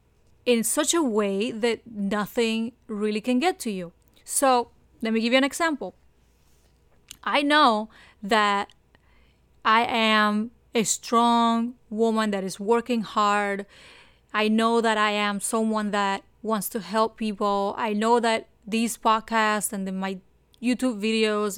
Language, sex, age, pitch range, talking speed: English, female, 30-49, 205-245 Hz, 140 wpm